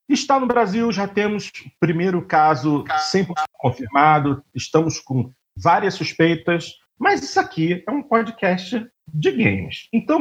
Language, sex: Portuguese, male